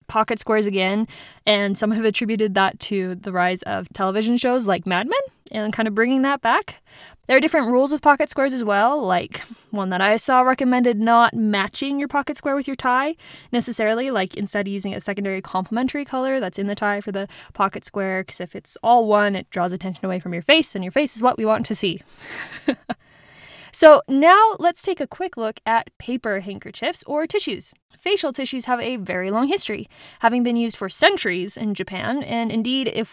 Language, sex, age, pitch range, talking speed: English, female, 20-39, 205-280 Hz, 205 wpm